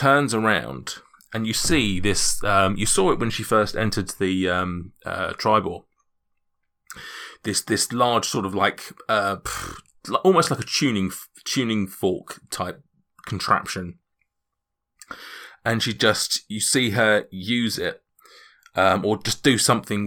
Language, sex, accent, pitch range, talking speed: English, male, British, 95-120 Hz, 140 wpm